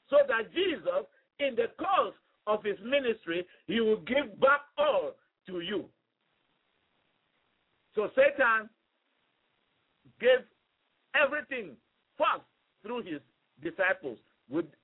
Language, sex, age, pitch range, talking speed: English, male, 50-69, 200-285 Hz, 100 wpm